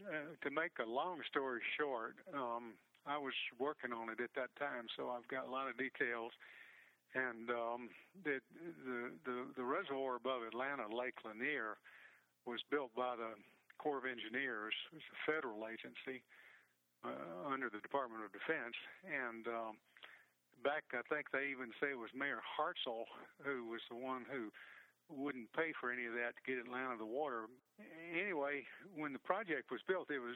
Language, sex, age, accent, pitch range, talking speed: English, male, 50-69, American, 115-135 Hz, 175 wpm